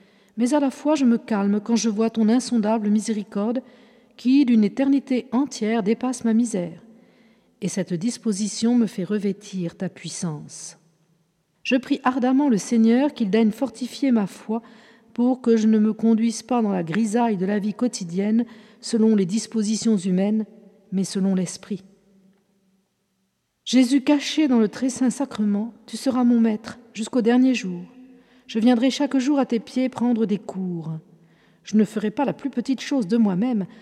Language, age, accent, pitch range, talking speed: French, 50-69, French, 205-250 Hz, 165 wpm